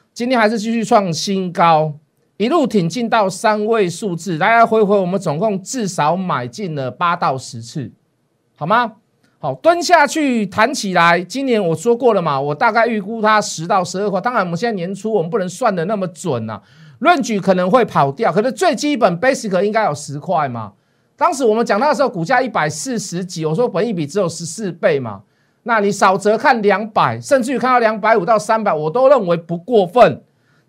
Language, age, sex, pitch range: Chinese, 50-69, male, 170-245 Hz